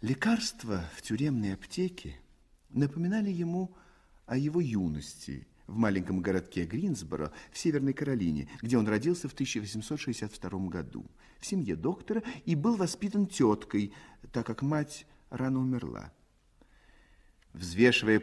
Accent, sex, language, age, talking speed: native, male, Russian, 50-69, 115 wpm